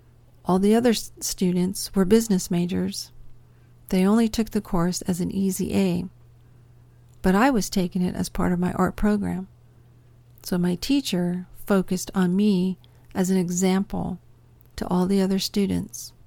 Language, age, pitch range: English, 50-69, 120-200 Hz